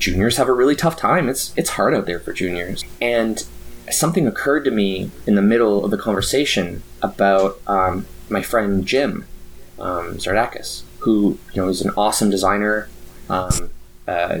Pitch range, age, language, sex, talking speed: 95-115 Hz, 20-39, English, male, 165 wpm